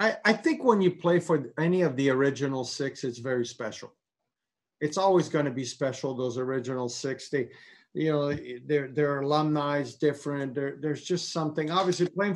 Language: English